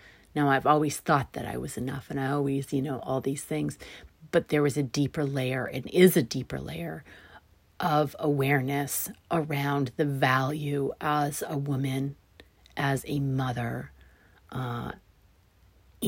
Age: 40-59